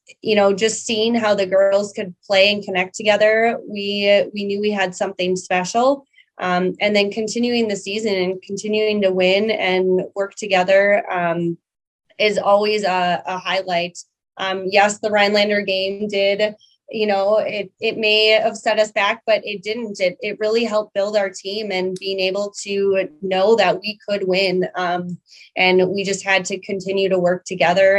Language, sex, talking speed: English, female, 175 wpm